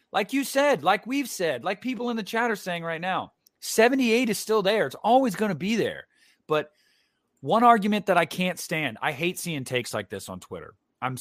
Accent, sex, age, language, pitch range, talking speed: American, male, 30-49, English, 125-180 Hz, 220 wpm